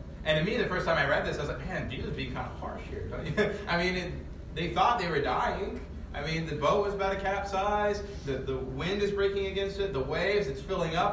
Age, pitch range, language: 30-49, 85-145 Hz, English